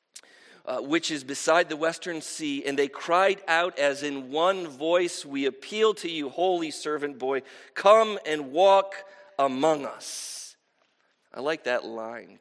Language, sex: English, male